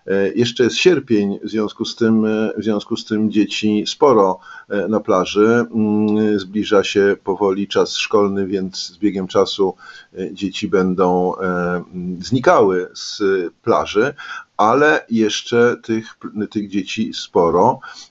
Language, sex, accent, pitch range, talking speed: Polish, male, native, 105-120 Hz, 105 wpm